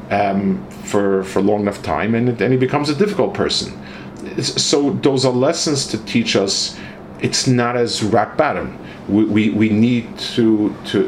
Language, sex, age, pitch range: English, male, 40-59, 100-120 Hz